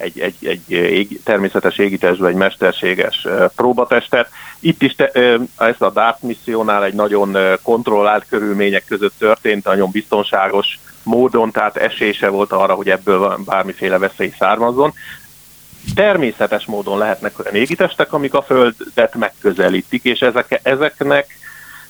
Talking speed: 125 wpm